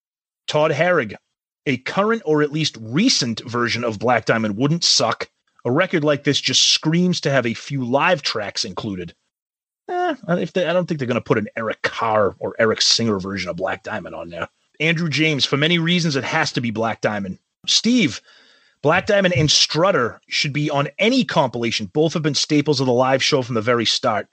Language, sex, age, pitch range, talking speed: English, male, 30-49, 135-195 Hz, 195 wpm